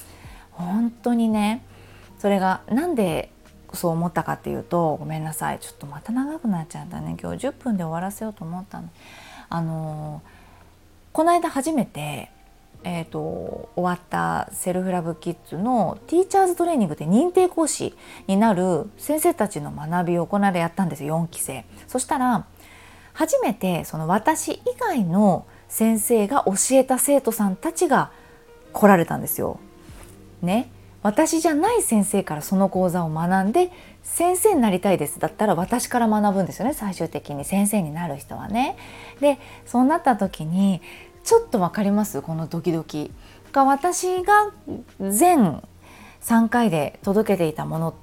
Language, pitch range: Japanese, 165-255 Hz